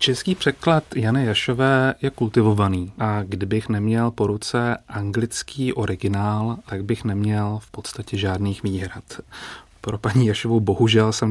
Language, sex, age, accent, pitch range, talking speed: Czech, male, 30-49, native, 105-130 Hz, 135 wpm